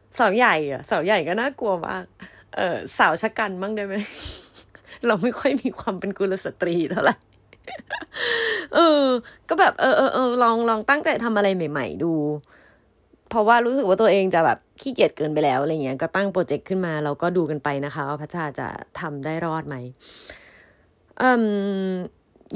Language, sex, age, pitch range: Thai, female, 20-39, 160-225 Hz